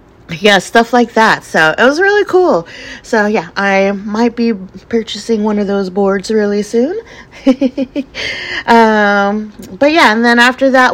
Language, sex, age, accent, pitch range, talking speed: English, female, 30-49, American, 165-205 Hz, 155 wpm